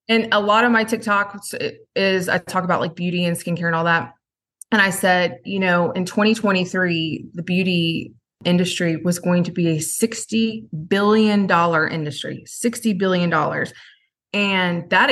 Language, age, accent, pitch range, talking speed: English, 20-39, American, 170-200 Hz, 155 wpm